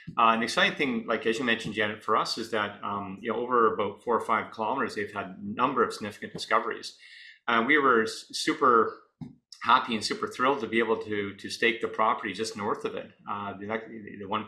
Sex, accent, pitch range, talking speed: male, American, 105-120 Hz, 220 wpm